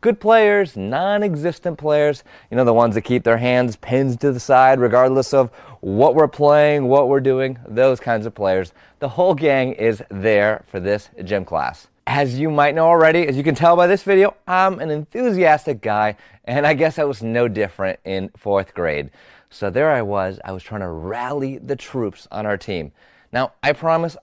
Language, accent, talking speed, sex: English, American, 200 wpm, male